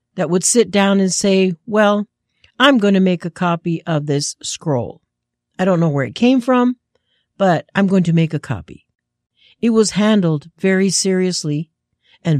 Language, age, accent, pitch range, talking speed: English, 50-69, American, 150-230 Hz, 175 wpm